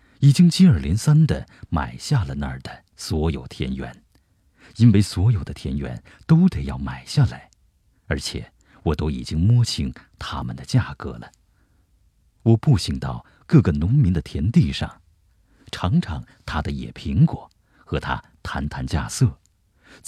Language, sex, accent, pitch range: Chinese, male, native, 75-110 Hz